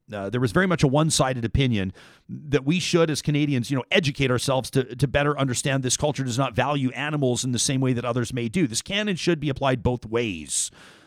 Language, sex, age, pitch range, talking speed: English, male, 40-59, 120-150 Hz, 235 wpm